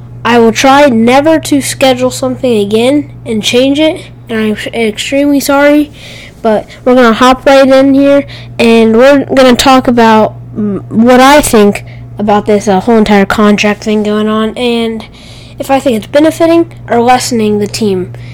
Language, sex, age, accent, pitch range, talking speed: English, female, 10-29, American, 205-265 Hz, 165 wpm